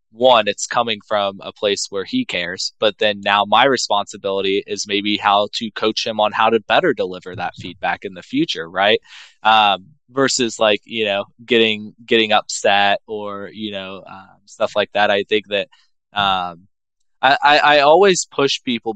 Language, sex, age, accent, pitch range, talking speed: English, male, 20-39, American, 100-120 Hz, 175 wpm